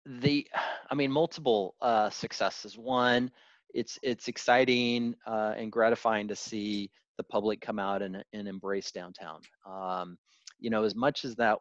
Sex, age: male, 30-49